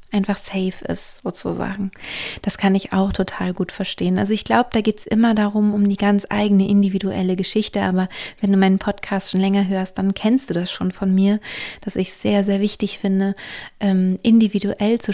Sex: female